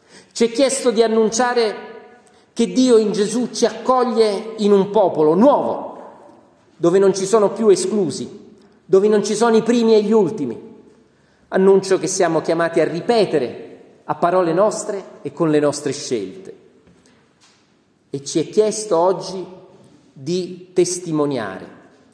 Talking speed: 140 wpm